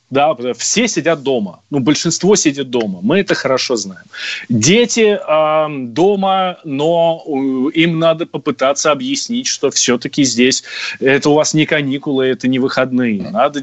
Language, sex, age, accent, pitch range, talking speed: Russian, male, 20-39, native, 135-185 Hz, 140 wpm